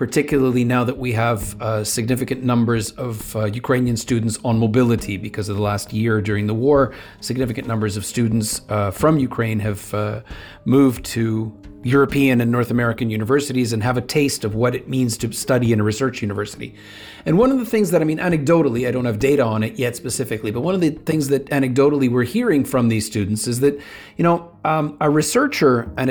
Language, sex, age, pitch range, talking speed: Ukrainian, male, 40-59, 115-145 Hz, 205 wpm